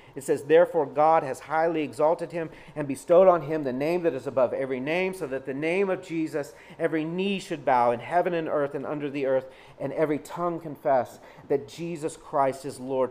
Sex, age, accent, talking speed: male, 40-59, American, 210 wpm